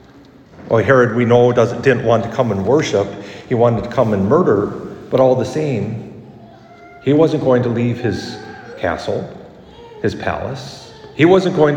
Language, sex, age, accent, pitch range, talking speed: English, male, 50-69, American, 110-130 Hz, 175 wpm